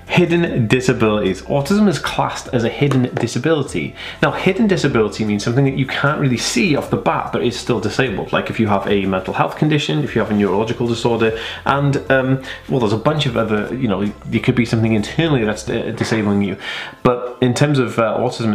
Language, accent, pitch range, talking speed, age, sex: English, British, 115-140 Hz, 205 wpm, 20-39, male